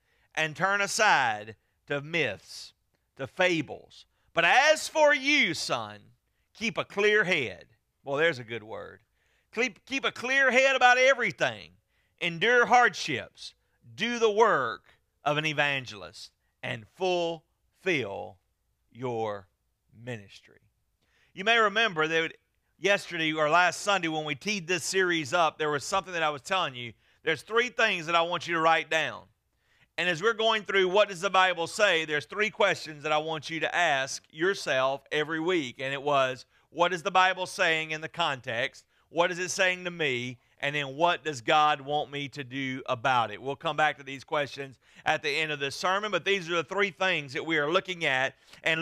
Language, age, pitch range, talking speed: English, 40-59, 145-195 Hz, 180 wpm